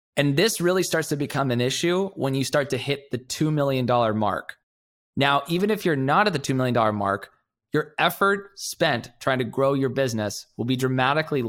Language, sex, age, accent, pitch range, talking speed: English, male, 20-39, American, 115-155 Hz, 200 wpm